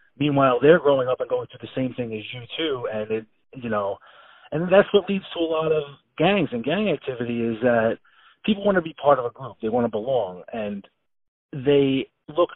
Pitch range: 105-155 Hz